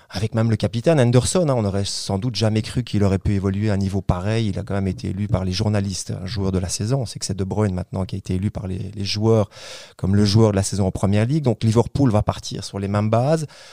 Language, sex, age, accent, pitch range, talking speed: French, male, 30-49, French, 100-120 Hz, 290 wpm